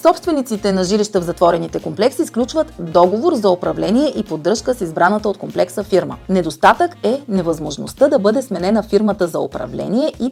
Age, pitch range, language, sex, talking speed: 30-49, 180-260 Hz, Bulgarian, female, 155 wpm